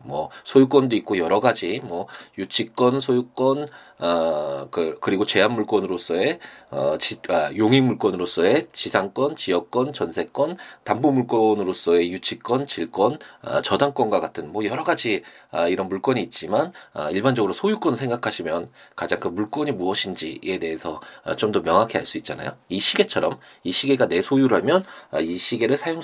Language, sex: Korean, male